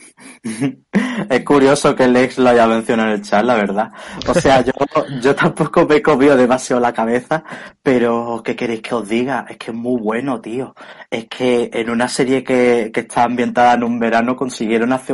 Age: 20-39